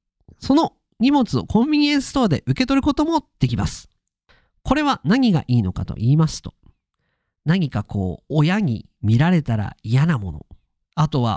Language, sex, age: Japanese, male, 40-59